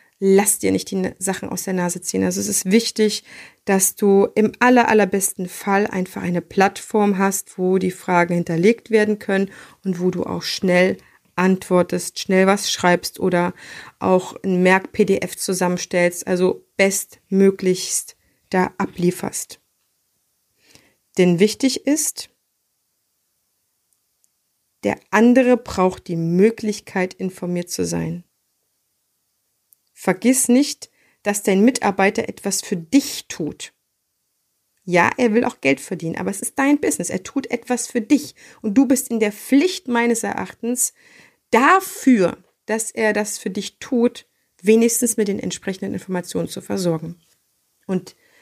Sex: female